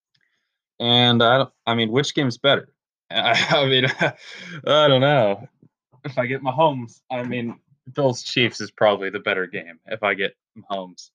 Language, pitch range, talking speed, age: English, 100-135 Hz, 165 wpm, 20-39